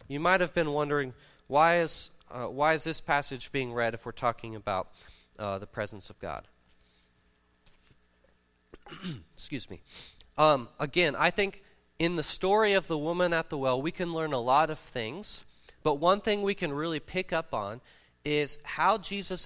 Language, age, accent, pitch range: English, 30-49, American, 125-175 Hz